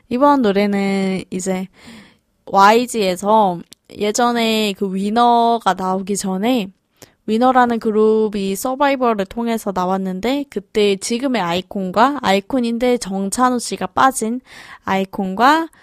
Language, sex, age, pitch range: Korean, female, 20-39, 195-235 Hz